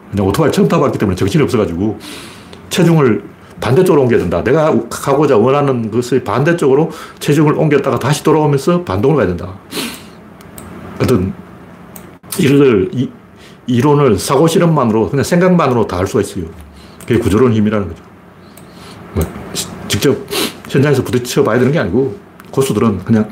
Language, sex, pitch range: Korean, male, 105-160 Hz